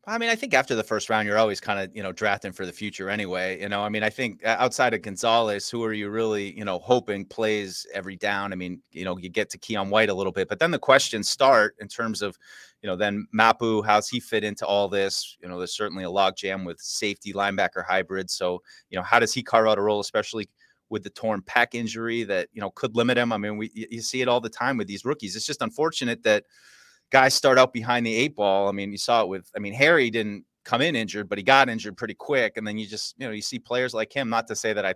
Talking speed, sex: 275 wpm, male